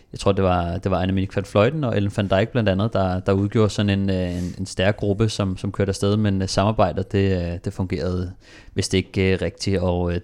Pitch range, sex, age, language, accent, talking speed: 90-105 Hz, male, 30-49, Danish, native, 235 wpm